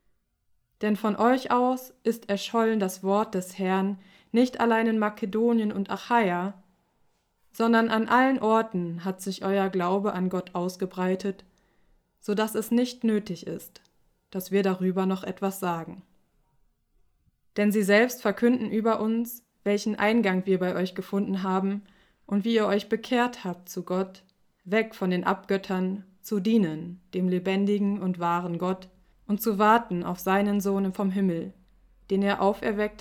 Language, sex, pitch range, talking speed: German, female, 185-215 Hz, 150 wpm